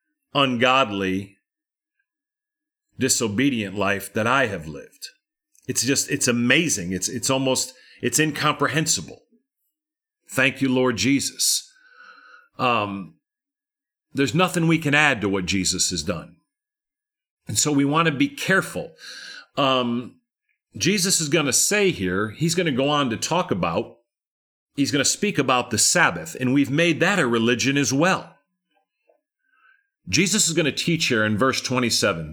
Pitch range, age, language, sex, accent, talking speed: 125-205 Hz, 40-59, English, male, American, 145 wpm